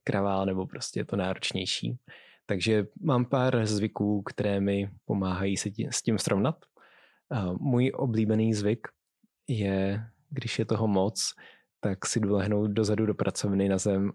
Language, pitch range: Czech, 95-115 Hz